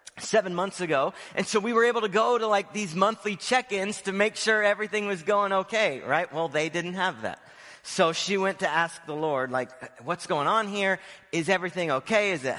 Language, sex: English, male